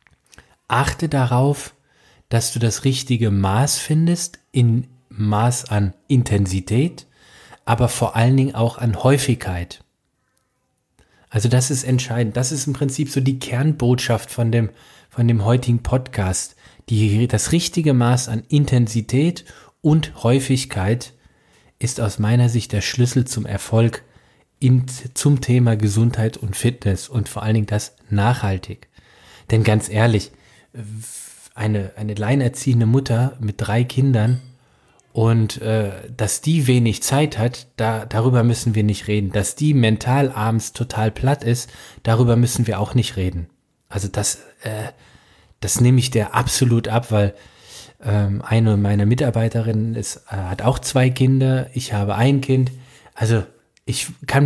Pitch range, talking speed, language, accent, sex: 105-130 Hz, 135 wpm, German, German, male